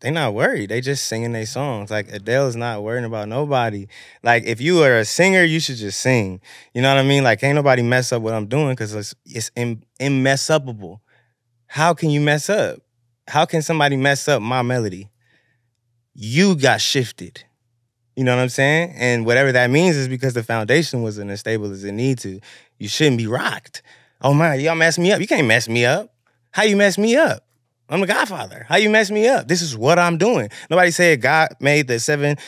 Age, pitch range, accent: 20-39, 120-155 Hz, American